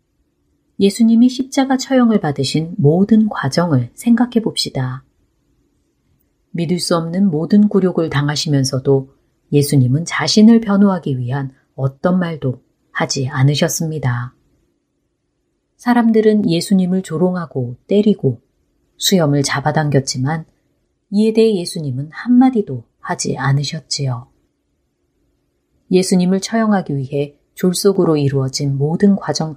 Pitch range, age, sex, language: 130-195 Hz, 30-49, female, Korean